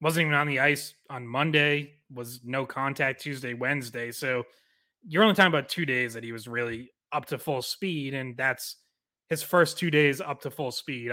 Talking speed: 200 wpm